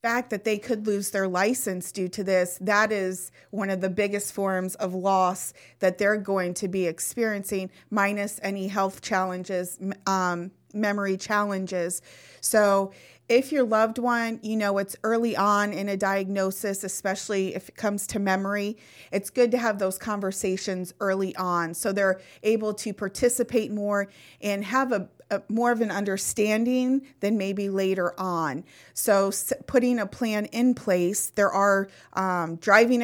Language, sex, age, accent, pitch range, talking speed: English, female, 30-49, American, 190-215 Hz, 155 wpm